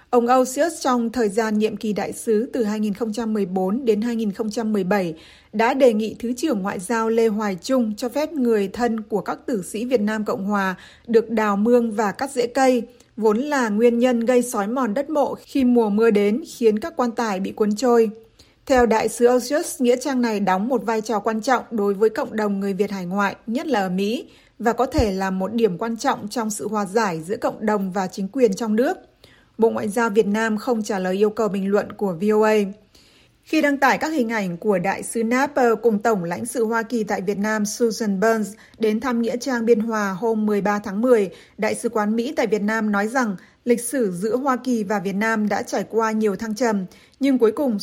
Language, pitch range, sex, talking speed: Vietnamese, 210-245 Hz, female, 225 wpm